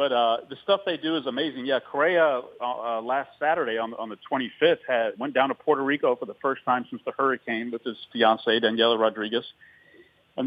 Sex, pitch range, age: male, 115-135 Hz, 40-59